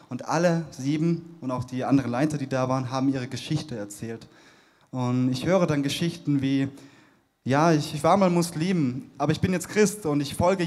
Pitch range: 130-155 Hz